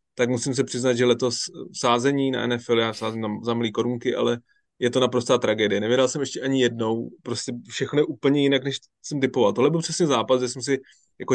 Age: 20-39